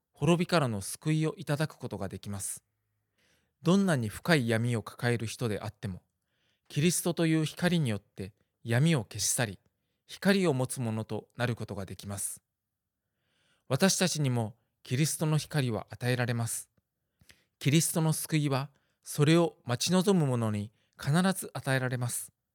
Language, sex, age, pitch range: Japanese, male, 20-39, 110-155 Hz